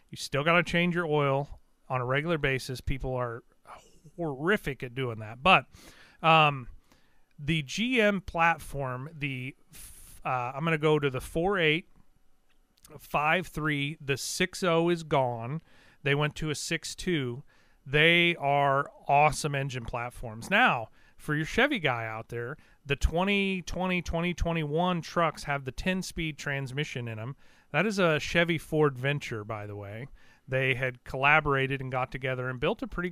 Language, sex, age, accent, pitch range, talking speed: English, male, 40-59, American, 130-160 Hz, 145 wpm